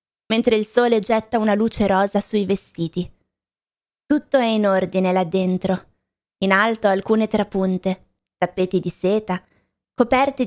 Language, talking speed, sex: Italian, 130 wpm, female